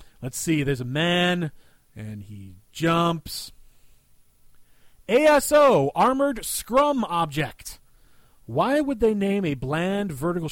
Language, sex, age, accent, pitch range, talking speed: English, male, 30-49, American, 140-200 Hz, 110 wpm